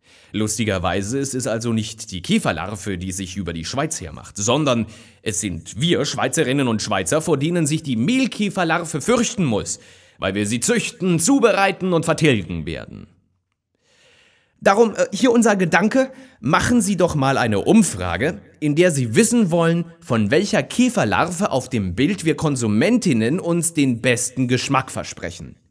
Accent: German